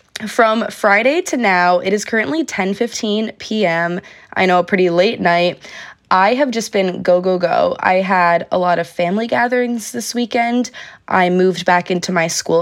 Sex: female